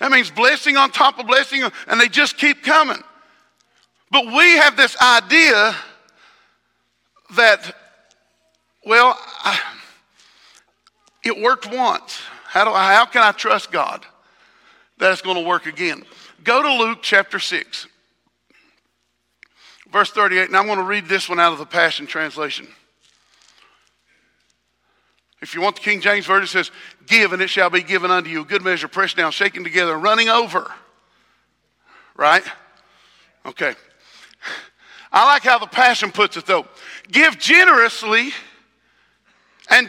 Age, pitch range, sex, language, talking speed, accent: 50-69, 190-275 Hz, male, English, 135 wpm, American